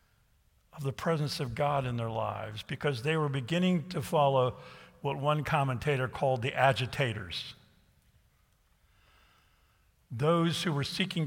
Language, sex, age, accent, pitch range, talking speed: English, male, 50-69, American, 110-155 Hz, 130 wpm